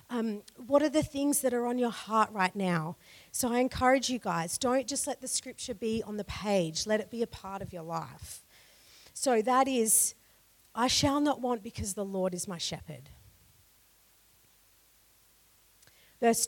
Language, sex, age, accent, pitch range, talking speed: English, female, 40-59, Australian, 170-235 Hz, 175 wpm